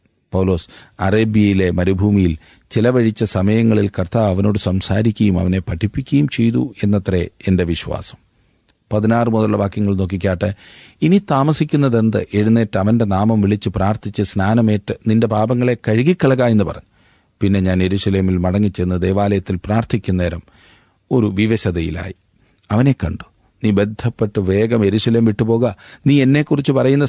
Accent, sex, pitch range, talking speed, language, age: native, male, 95-125 Hz, 110 wpm, Malayalam, 40-59